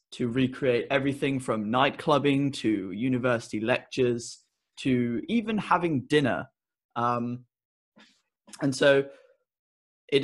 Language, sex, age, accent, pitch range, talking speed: English, male, 20-39, British, 120-140 Hz, 100 wpm